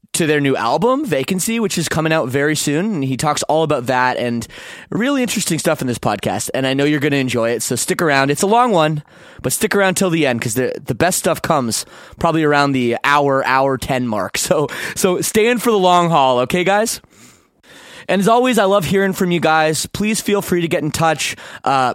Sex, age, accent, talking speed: male, 20-39, American, 230 wpm